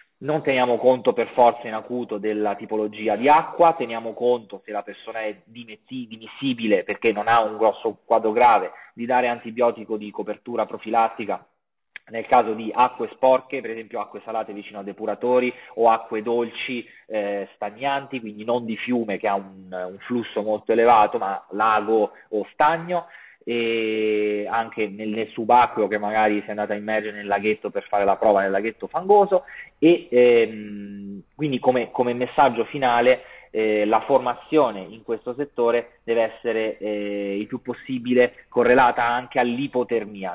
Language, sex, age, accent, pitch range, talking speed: Italian, male, 30-49, native, 105-130 Hz, 155 wpm